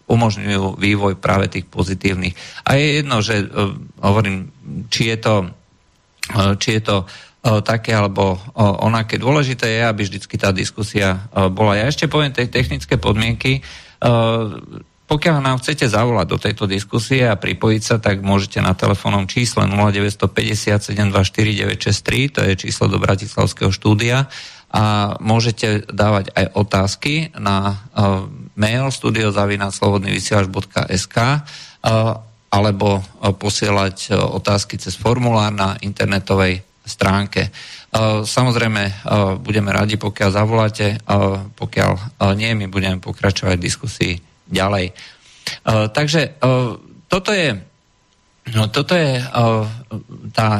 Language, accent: Czech, Slovak